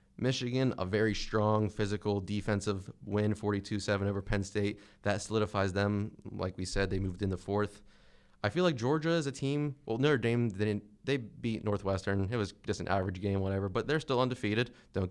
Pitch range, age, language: 100-125 Hz, 30-49, English